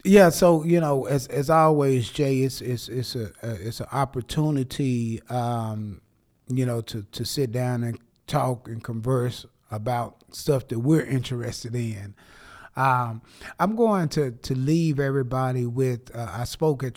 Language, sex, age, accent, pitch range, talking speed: English, male, 30-49, American, 115-145 Hz, 160 wpm